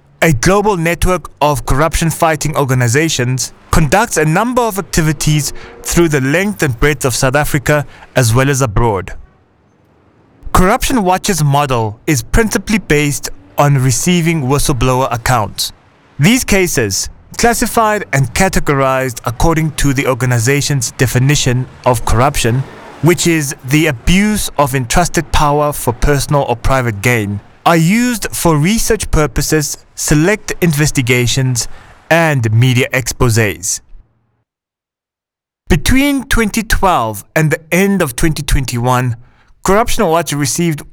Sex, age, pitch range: male, 20-39, 130-175 Hz